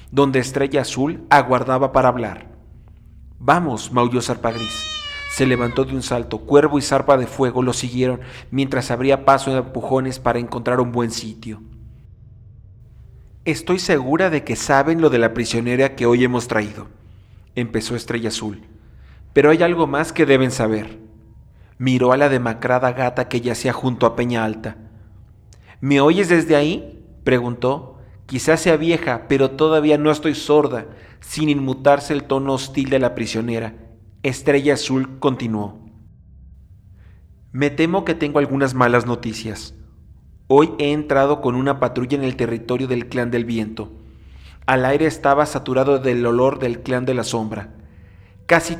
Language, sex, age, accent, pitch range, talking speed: Spanish, male, 40-59, Mexican, 110-140 Hz, 150 wpm